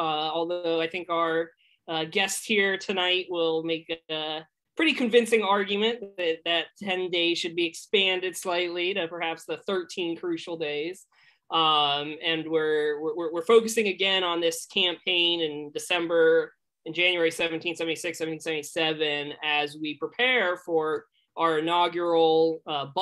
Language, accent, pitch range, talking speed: English, American, 160-195 Hz, 115 wpm